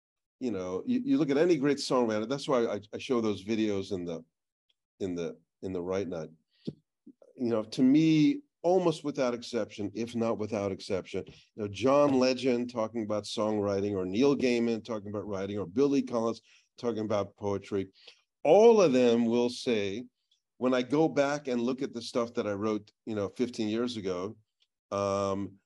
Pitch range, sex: 105-135 Hz, male